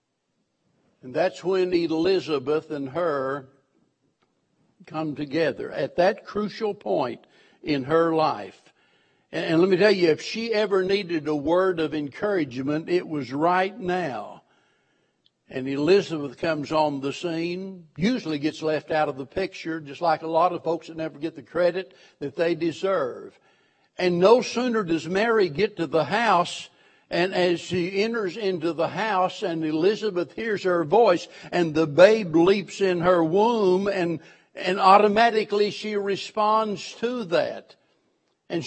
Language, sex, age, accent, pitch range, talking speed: English, male, 60-79, American, 170-215 Hz, 150 wpm